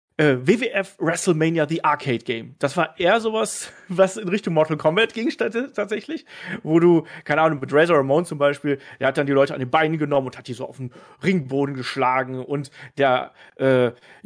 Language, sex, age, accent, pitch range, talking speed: German, male, 40-59, German, 135-170 Hz, 195 wpm